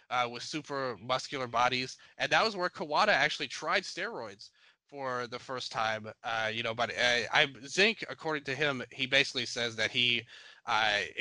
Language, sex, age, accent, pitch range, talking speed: English, male, 20-39, American, 120-150 Hz, 175 wpm